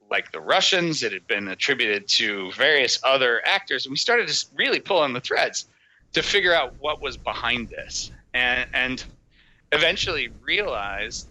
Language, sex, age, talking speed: English, male, 30-49, 165 wpm